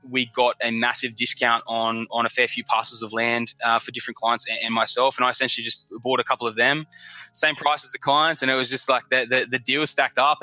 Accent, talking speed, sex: Australian, 260 wpm, male